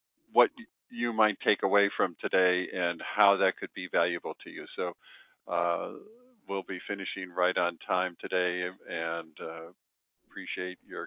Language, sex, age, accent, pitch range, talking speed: English, male, 50-69, American, 95-115 Hz, 150 wpm